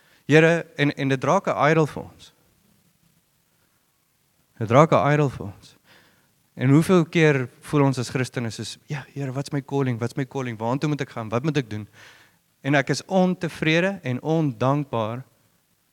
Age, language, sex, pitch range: 30-49, English, male, 115-150 Hz